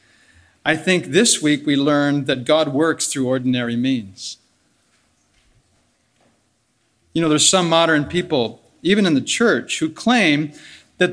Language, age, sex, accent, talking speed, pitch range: English, 40-59, male, American, 135 wpm, 150-200 Hz